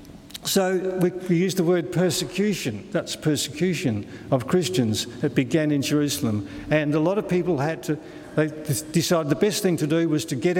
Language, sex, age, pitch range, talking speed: English, male, 50-69, 140-170 Hz, 180 wpm